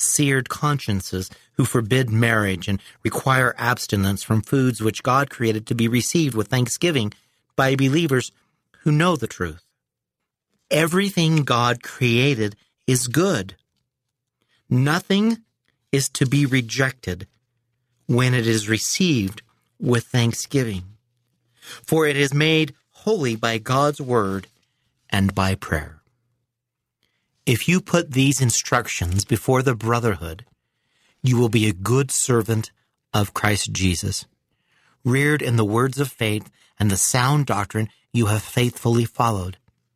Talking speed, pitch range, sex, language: 125 wpm, 110-140 Hz, male, English